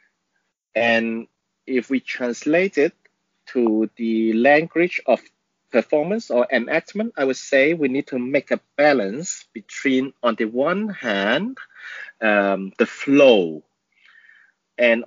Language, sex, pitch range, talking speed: English, male, 115-170 Hz, 120 wpm